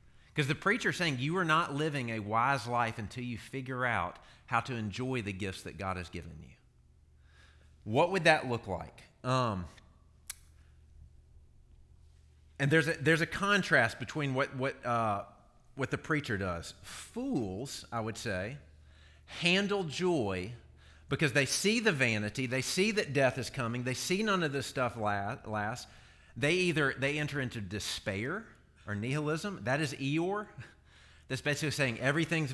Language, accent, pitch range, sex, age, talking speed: English, American, 90-150 Hz, male, 40-59, 155 wpm